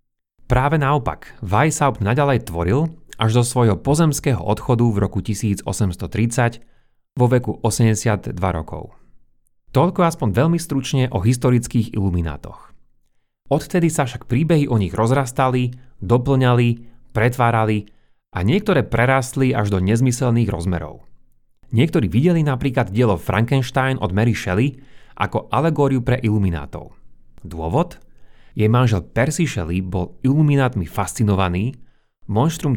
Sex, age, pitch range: male, 30-49, 105-135 Hz